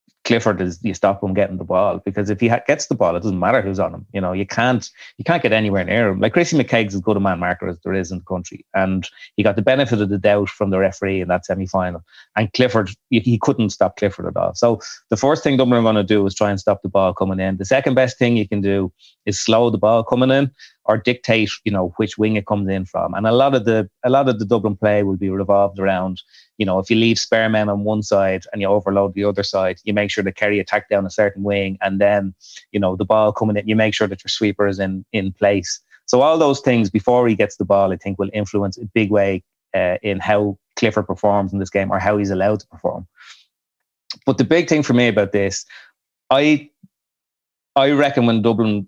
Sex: male